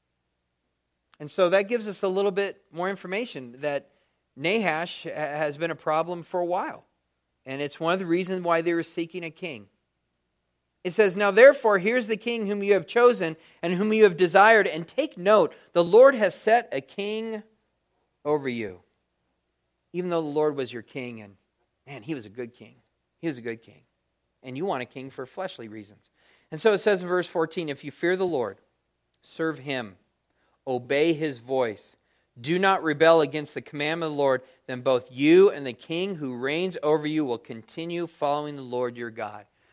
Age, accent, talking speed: 40-59, American, 195 wpm